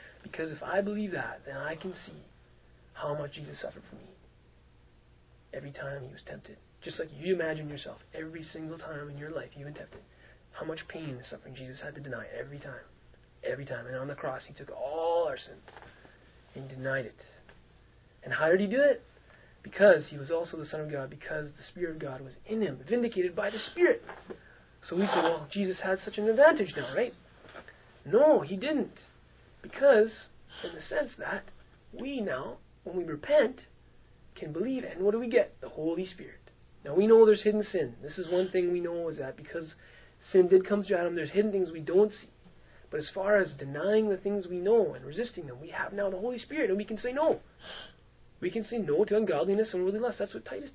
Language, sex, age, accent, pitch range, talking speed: English, male, 30-49, American, 145-210 Hz, 215 wpm